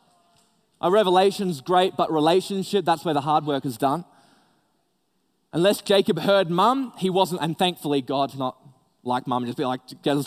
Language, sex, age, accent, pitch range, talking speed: English, male, 20-39, Australian, 155-200 Hz, 170 wpm